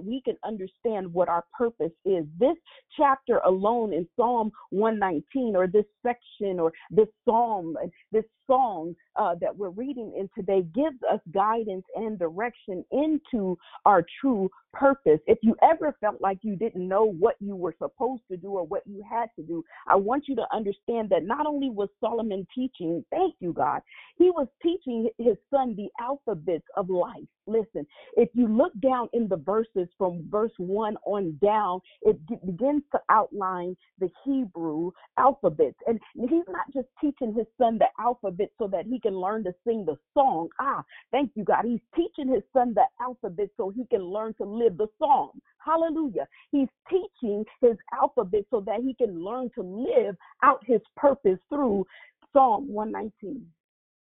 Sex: female